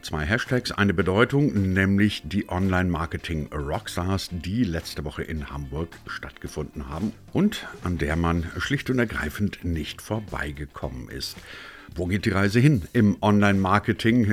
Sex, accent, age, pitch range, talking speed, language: male, German, 60-79, 75-105 Hz, 130 wpm, German